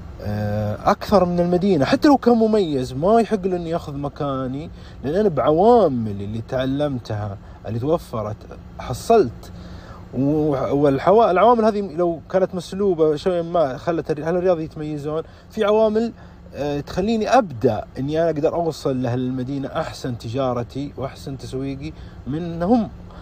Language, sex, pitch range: Arabic, male, 115-165 Hz